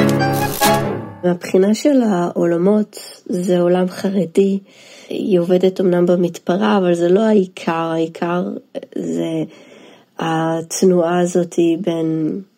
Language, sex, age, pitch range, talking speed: Hebrew, female, 30-49, 175-195 Hz, 90 wpm